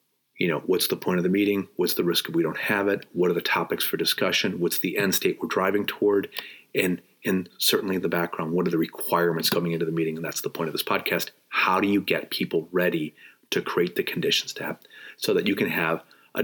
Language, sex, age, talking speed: English, male, 30-49, 250 wpm